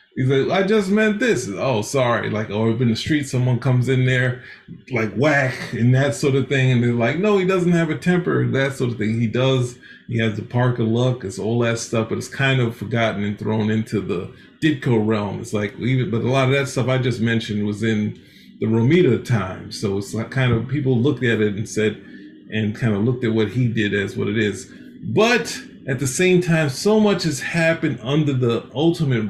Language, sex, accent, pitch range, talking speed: English, male, American, 115-150 Hz, 225 wpm